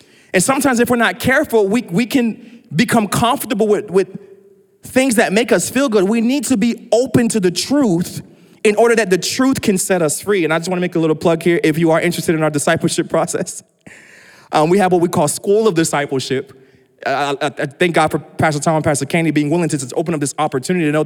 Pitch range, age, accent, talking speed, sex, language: 160-195 Hz, 20-39, American, 235 wpm, male, English